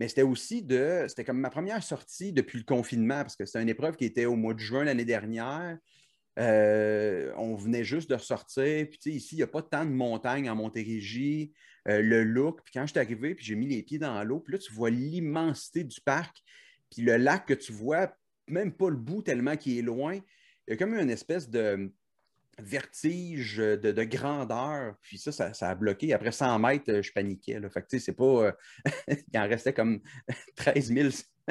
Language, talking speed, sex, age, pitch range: French, 220 wpm, male, 30-49, 110-150 Hz